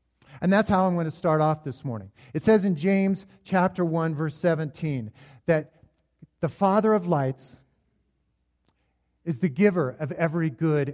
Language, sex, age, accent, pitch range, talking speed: English, male, 50-69, American, 140-190 Hz, 160 wpm